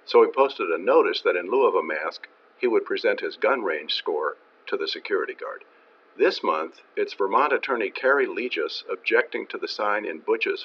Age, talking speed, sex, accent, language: 50-69, 195 wpm, male, American, English